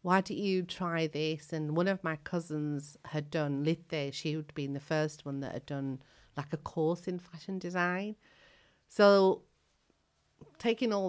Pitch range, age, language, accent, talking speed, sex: 130-155 Hz, 40-59, English, British, 170 wpm, female